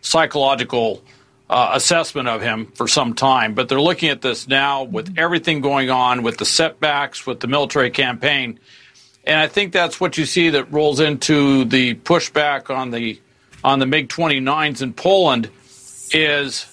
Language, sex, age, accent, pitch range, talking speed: English, male, 50-69, American, 130-155 Hz, 160 wpm